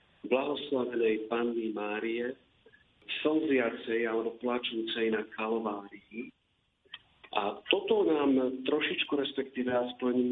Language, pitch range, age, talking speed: Slovak, 110-130 Hz, 50-69, 85 wpm